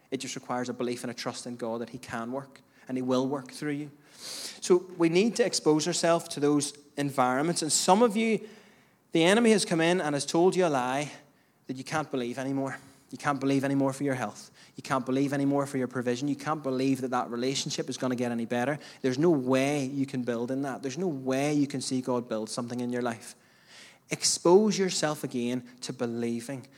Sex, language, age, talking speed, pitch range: male, English, 20-39, 220 wpm, 130-170 Hz